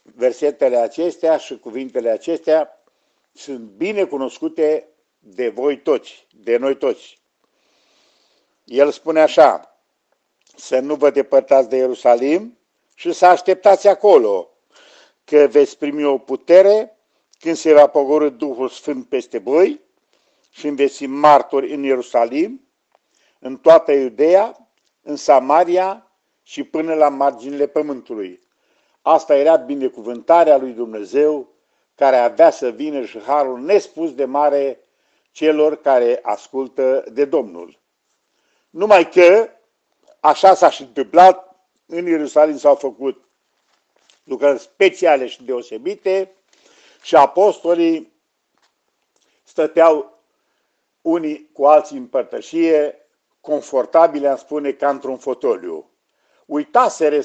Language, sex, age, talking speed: Romanian, male, 50-69, 110 wpm